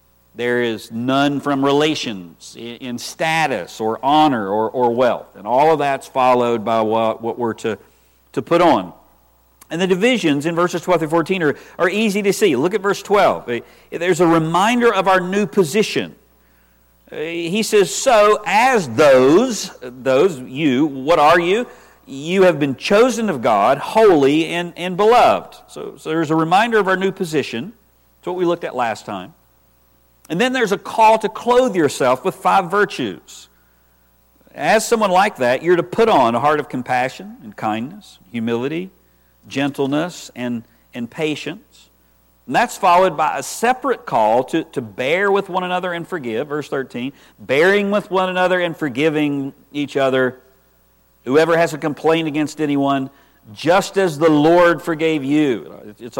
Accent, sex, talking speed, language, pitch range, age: American, male, 165 wpm, English, 120-190 Hz, 50-69